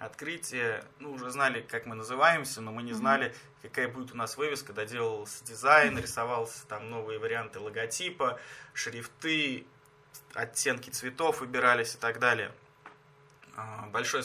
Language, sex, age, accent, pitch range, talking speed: Russian, male, 20-39, native, 115-135 Hz, 130 wpm